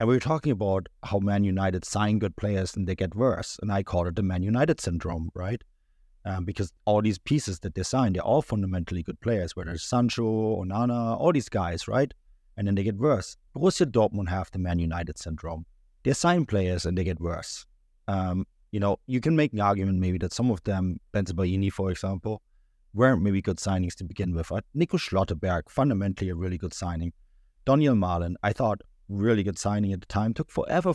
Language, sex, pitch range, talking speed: English, male, 90-115 Hz, 210 wpm